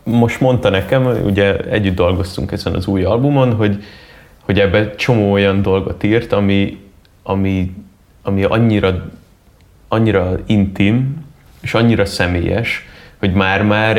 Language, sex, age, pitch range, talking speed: Hungarian, male, 20-39, 95-115 Hz, 120 wpm